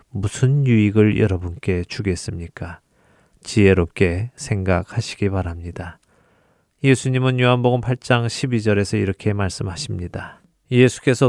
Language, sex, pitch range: Korean, male, 95-125 Hz